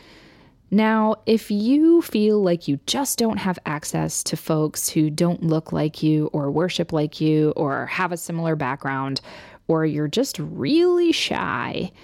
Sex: female